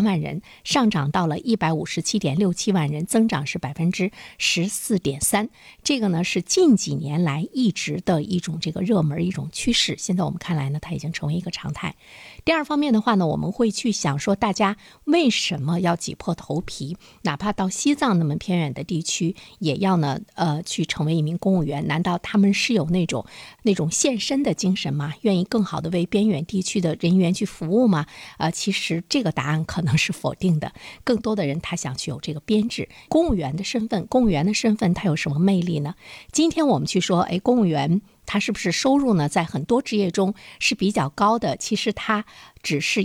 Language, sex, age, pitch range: Chinese, female, 50-69, 160-215 Hz